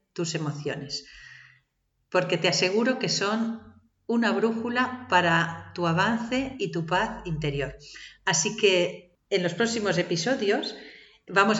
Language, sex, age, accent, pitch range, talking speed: Spanish, female, 40-59, Spanish, 170-230 Hz, 120 wpm